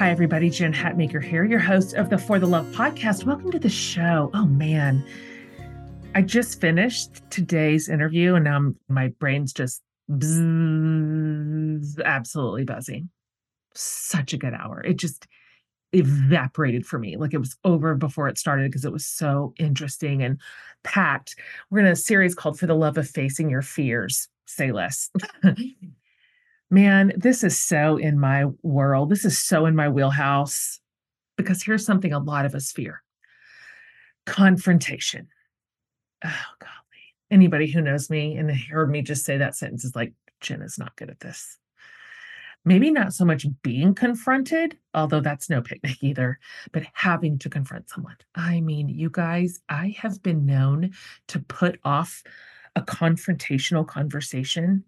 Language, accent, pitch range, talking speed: English, American, 145-190 Hz, 155 wpm